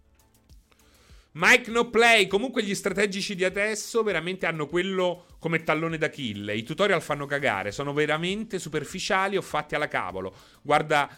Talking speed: 145 wpm